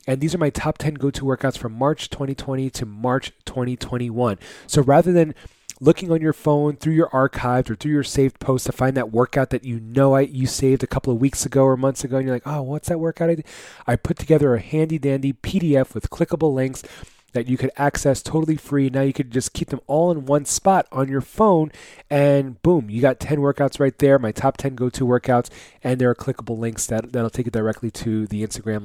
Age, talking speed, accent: 30-49, 225 wpm, American